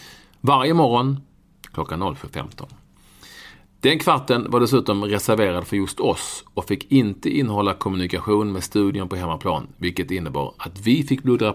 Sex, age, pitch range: male, 40-59, 90-115 Hz